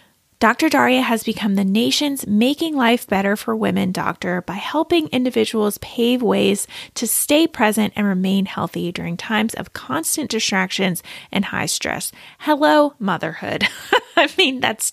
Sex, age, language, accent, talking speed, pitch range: female, 30-49, English, American, 145 wpm, 200-275 Hz